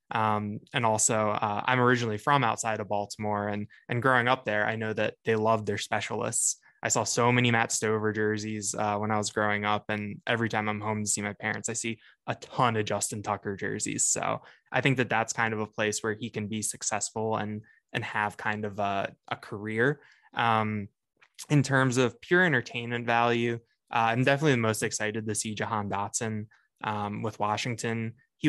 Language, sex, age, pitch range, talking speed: English, male, 20-39, 105-120 Hz, 200 wpm